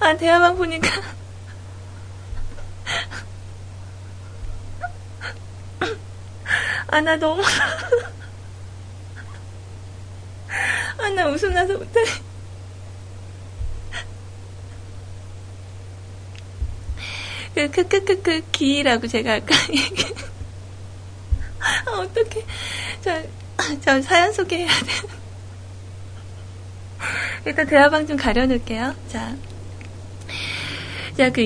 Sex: female